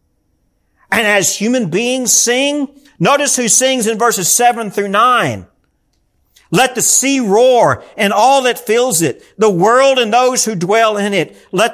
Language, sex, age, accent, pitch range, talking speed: English, male, 50-69, American, 140-225 Hz, 160 wpm